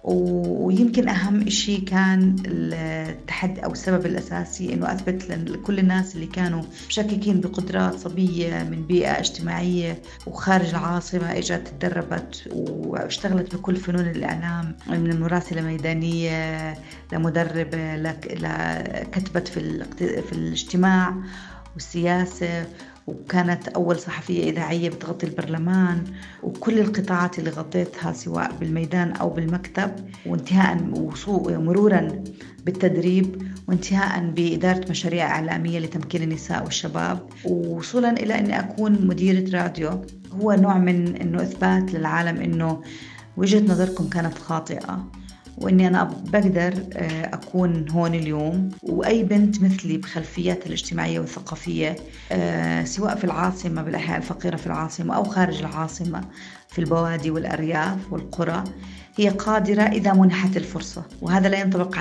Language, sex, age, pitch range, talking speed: Arabic, female, 40-59, 160-185 Hz, 110 wpm